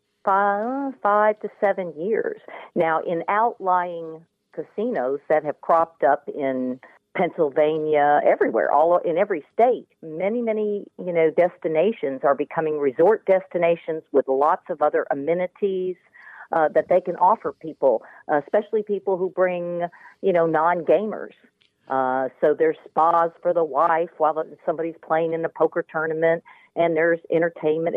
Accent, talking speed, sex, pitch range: American, 135 wpm, female, 160-210 Hz